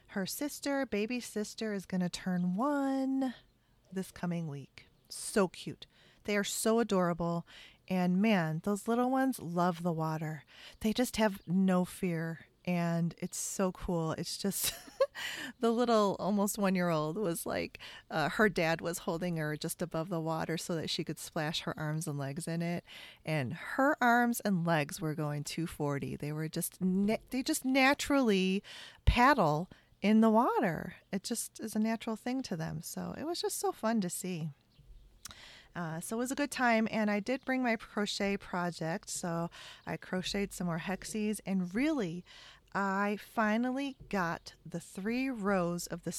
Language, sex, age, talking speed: English, female, 40-59, 170 wpm